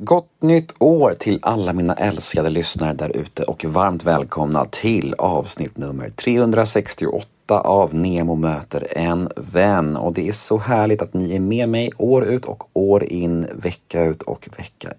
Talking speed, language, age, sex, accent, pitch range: 165 wpm, Swedish, 30-49, male, native, 85-115 Hz